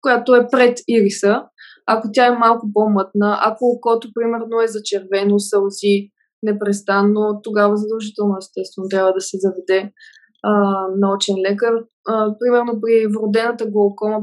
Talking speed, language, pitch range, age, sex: 130 wpm, Bulgarian, 205-235 Hz, 20-39, female